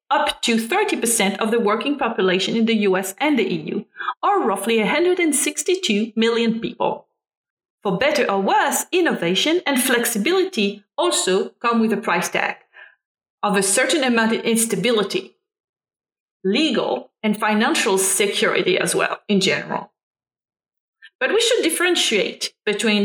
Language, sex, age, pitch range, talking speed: English, female, 30-49, 205-290 Hz, 130 wpm